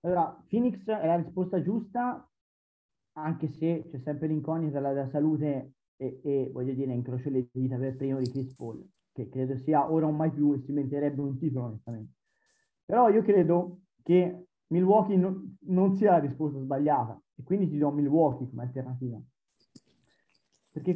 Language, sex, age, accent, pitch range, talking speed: Italian, male, 30-49, native, 130-170 Hz, 165 wpm